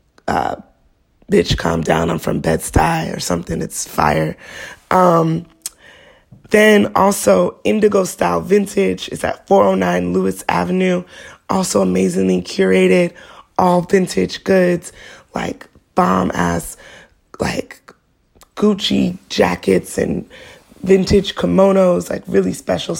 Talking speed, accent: 105 wpm, American